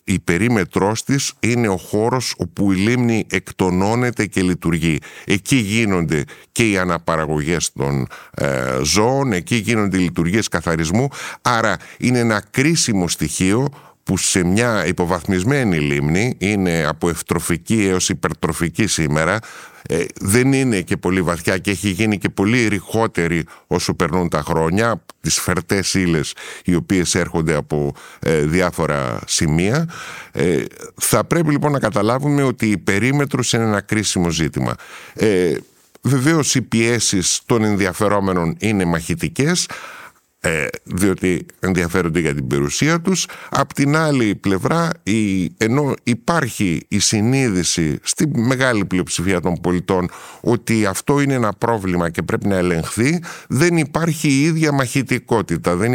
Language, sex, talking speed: Greek, male, 125 wpm